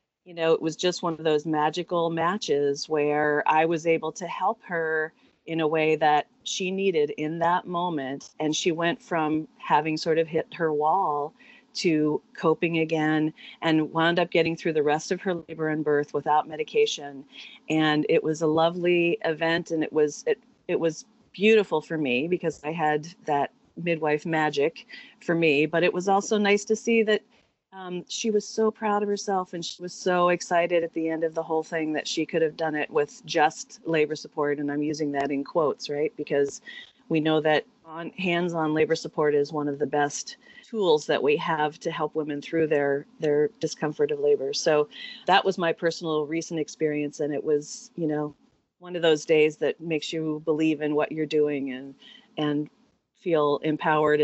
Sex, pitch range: female, 150-175 Hz